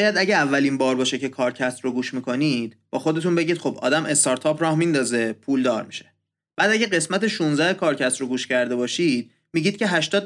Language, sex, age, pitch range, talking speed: Persian, male, 30-49, 135-195 Hz, 195 wpm